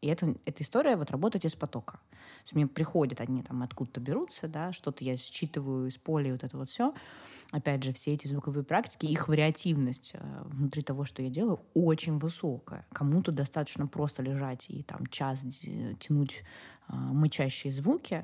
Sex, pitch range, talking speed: female, 135-160 Hz, 160 wpm